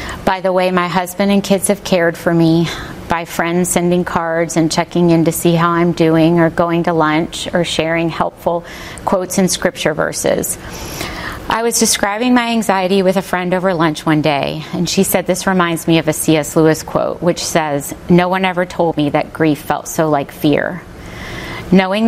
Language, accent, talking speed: English, American, 195 wpm